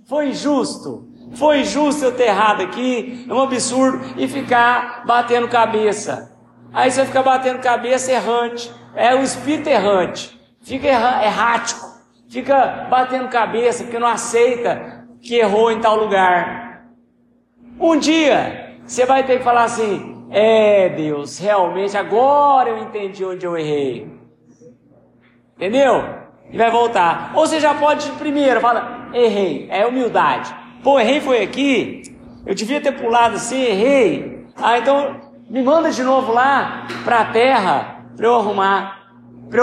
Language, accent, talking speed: Portuguese, Brazilian, 140 wpm